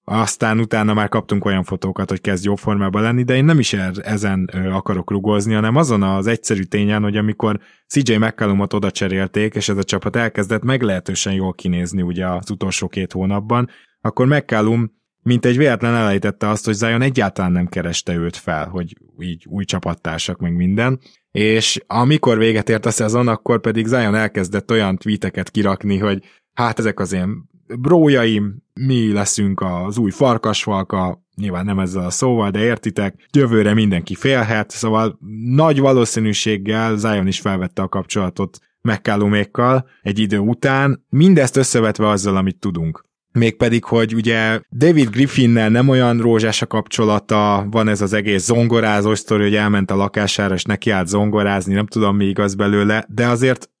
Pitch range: 100-115 Hz